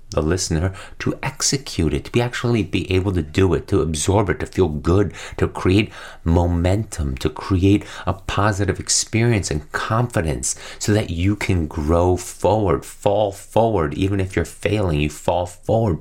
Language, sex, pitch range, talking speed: English, male, 75-100 Hz, 165 wpm